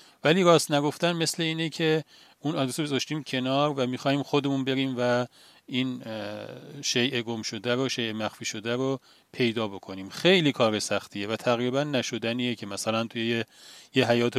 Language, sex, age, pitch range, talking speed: Persian, male, 40-59, 110-135 Hz, 160 wpm